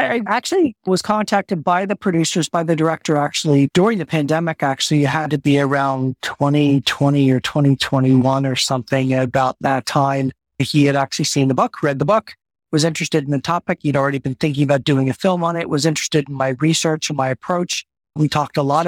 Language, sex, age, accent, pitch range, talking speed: English, male, 50-69, American, 135-155 Hz, 205 wpm